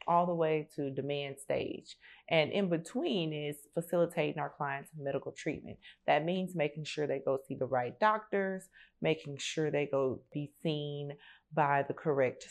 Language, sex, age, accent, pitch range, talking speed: English, female, 30-49, American, 140-175 Hz, 165 wpm